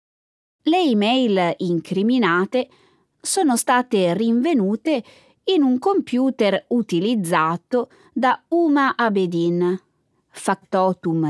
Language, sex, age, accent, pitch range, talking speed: Italian, female, 20-39, native, 175-270 Hz, 75 wpm